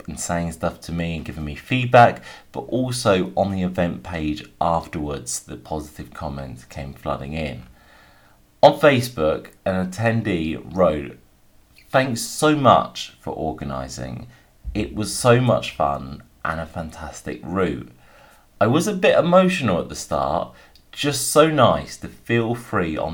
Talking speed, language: 145 wpm, English